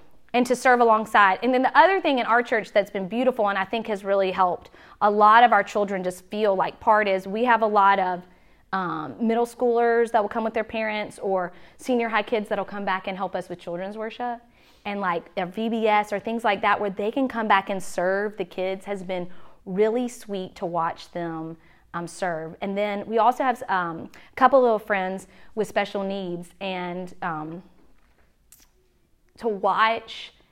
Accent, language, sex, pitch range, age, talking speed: American, English, female, 185-230 Hz, 30-49, 200 wpm